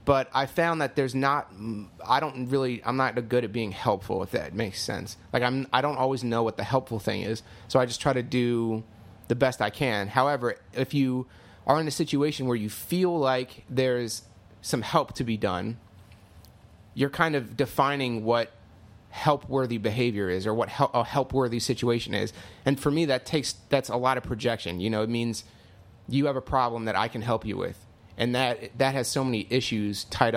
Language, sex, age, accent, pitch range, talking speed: English, male, 30-49, American, 110-130 Hz, 210 wpm